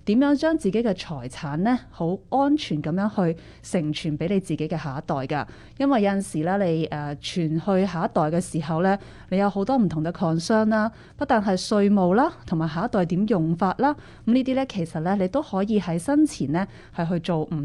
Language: Chinese